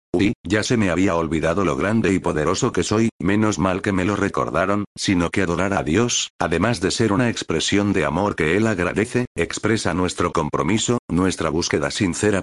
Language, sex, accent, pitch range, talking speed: Spanish, male, Spanish, 85-110 Hz, 190 wpm